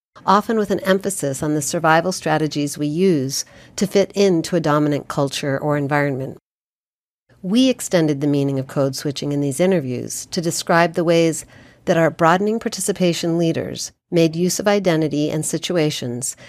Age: 50-69